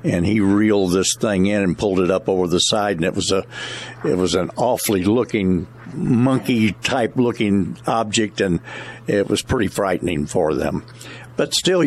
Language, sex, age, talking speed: English, male, 60-79, 175 wpm